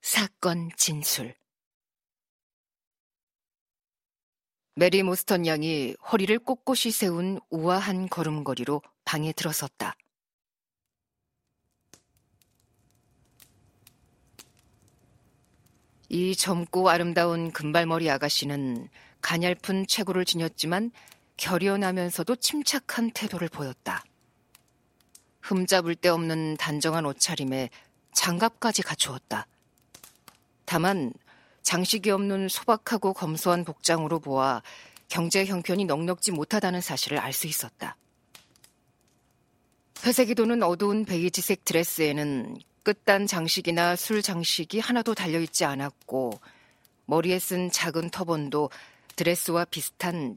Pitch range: 145-195 Hz